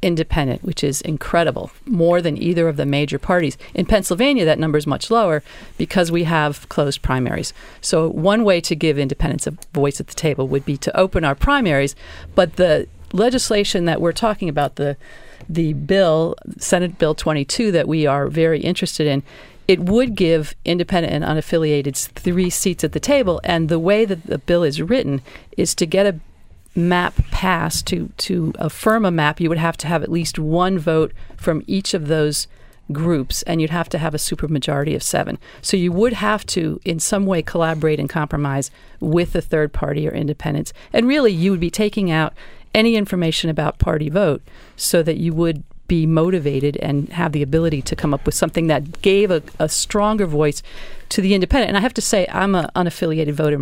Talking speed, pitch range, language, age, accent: 195 wpm, 150-190 Hz, English, 40-59, American